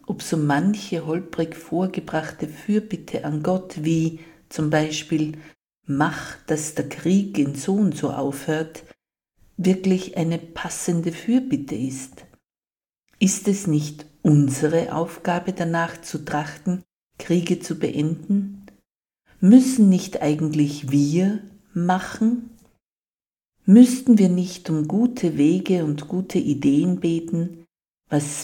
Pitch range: 150-185 Hz